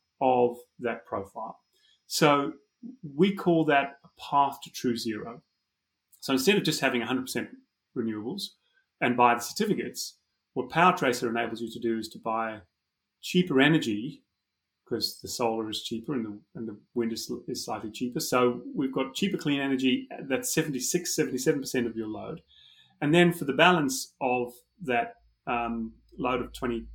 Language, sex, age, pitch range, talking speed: English, male, 30-49, 120-150 Hz, 165 wpm